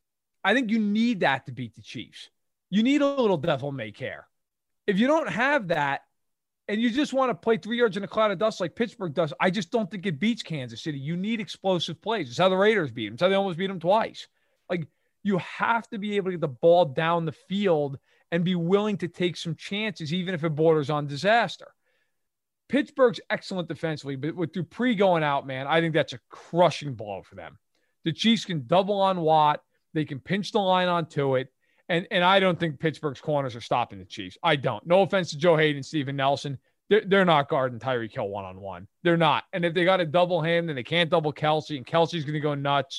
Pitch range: 145-195 Hz